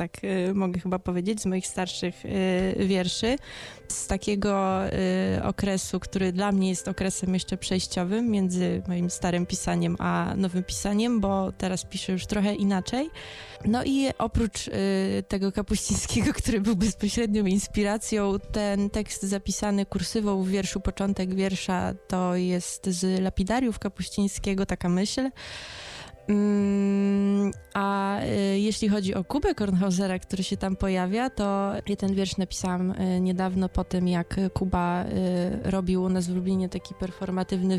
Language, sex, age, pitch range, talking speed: Polish, female, 20-39, 185-210 Hz, 130 wpm